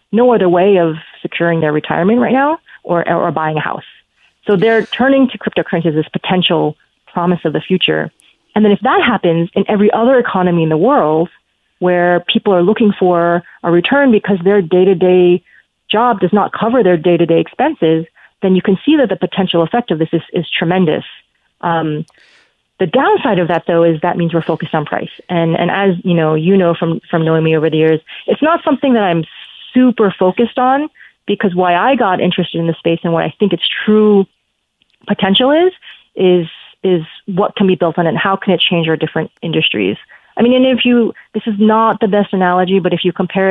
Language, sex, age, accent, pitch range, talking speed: English, female, 30-49, American, 170-210 Hz, 205 wpm